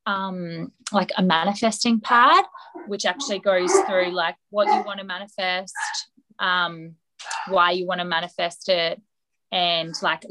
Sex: female